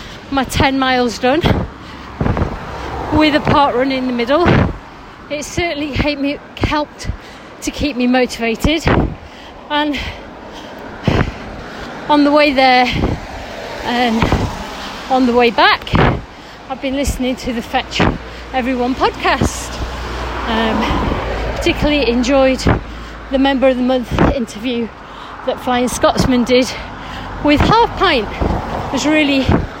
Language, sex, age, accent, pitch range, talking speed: English, female, 40-59, British, 245-285 Hz, 110 wpm